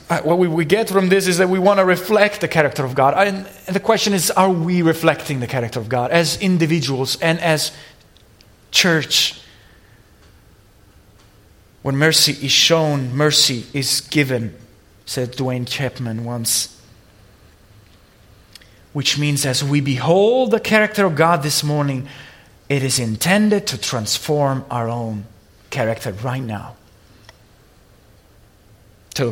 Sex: male